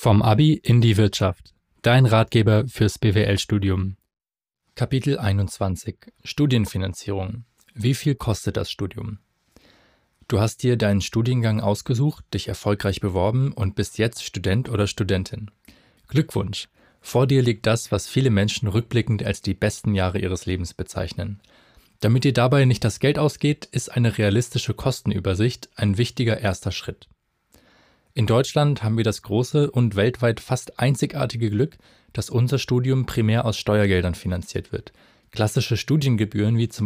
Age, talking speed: 20-39, 140 wpm